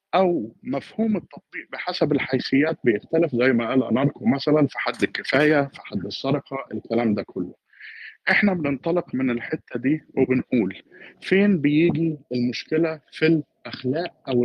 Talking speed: 135 wpm